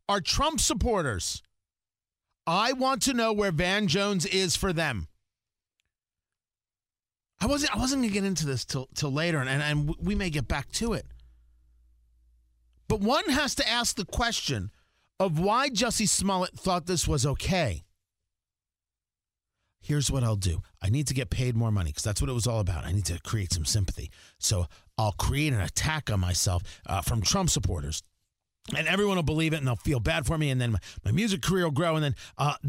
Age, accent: 40-59, American